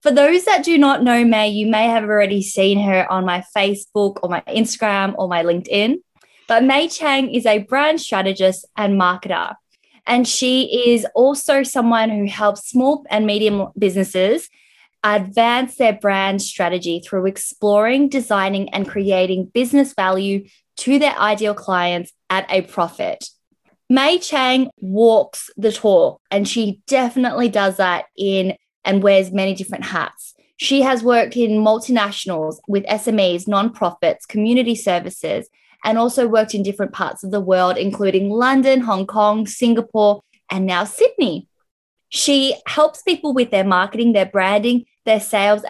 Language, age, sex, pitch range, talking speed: English, 20-39, female, 195-245 Hz, 150 wpm